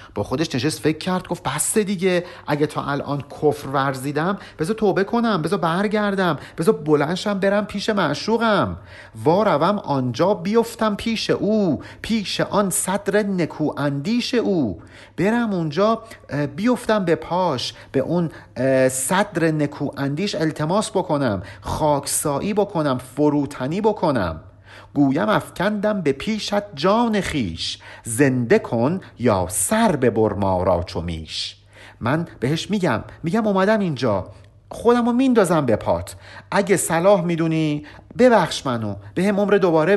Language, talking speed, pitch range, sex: Persian, 120 wpm, 125-200 Hz, male